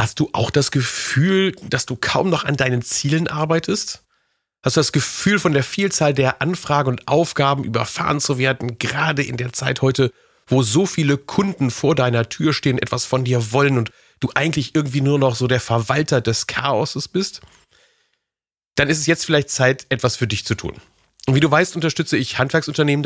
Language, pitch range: German, 115-150 Hz